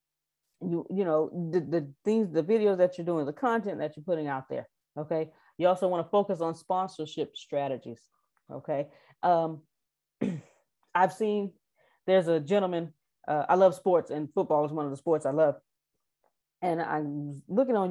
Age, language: 30-49, English